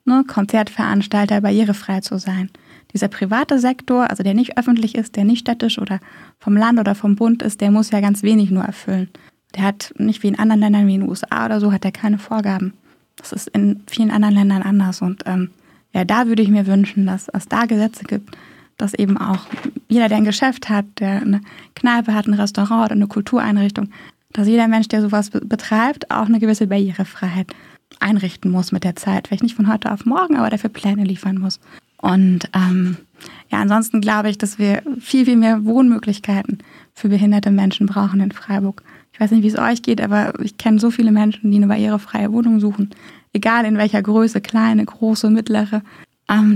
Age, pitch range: 20-39, 200-225 Hz